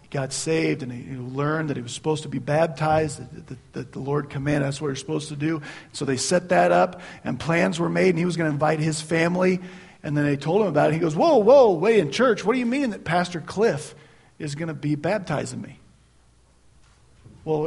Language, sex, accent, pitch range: English, male, American, 125-165 Hz